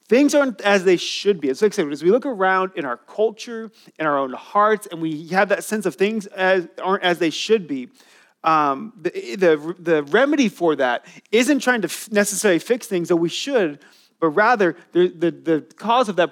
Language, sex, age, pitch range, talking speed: English, male, 30-49, 160-210 Hz, 195 wpm